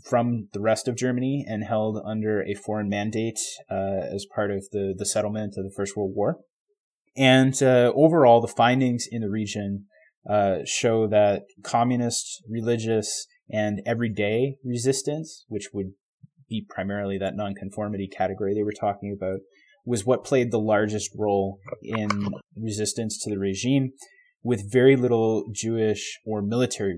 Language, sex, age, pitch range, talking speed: English, male, 20-39, 105-120 Hz, 150 wpm